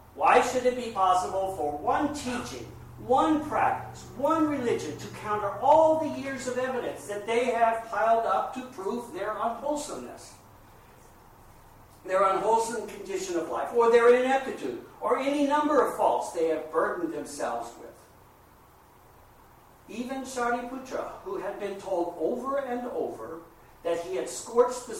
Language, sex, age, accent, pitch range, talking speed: English, male, 60-79, American, 175-245 Hz, 145 wpm